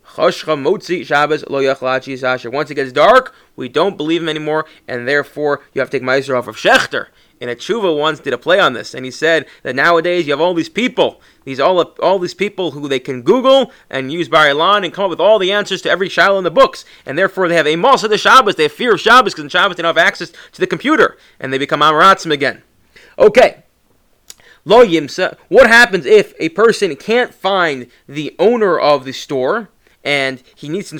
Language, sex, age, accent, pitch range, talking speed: English, male, 30-49, American, 145-195 Hz, 210 wpm